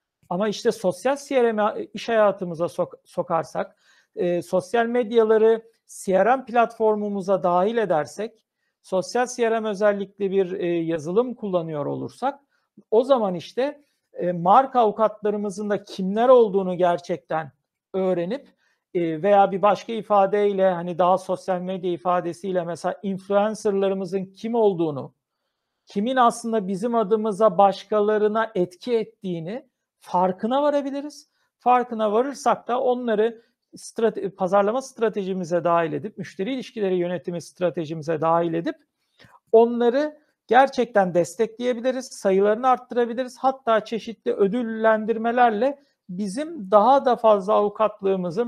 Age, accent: 60-79, native